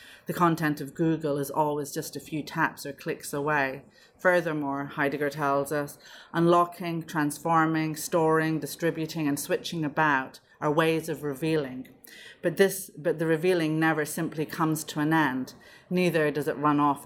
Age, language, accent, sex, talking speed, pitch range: 30-49, English, British, female, 155 wpm, 140-160 Hz